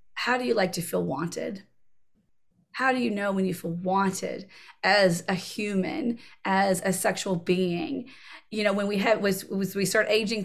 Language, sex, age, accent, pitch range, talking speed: English, female, 30-49, American, 190-240 Hz, 185 wpm